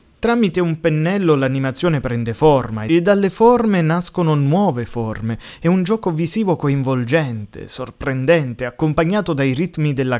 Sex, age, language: male, 20-39, Italian